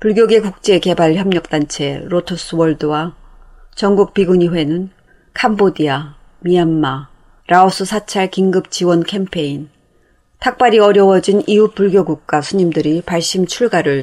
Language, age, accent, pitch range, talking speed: English, 40-59, Korean, 155-195 Hz, 80 wpm